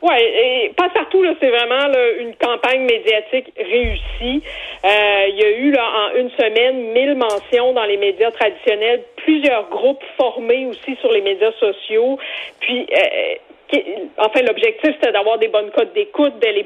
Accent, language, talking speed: Canadian, French, 175 wpm